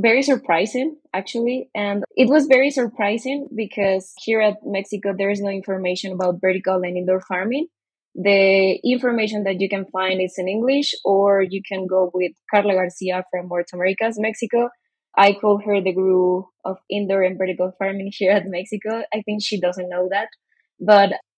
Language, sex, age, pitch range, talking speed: English, female, 20-39, 185-220 Hz, 170 wpm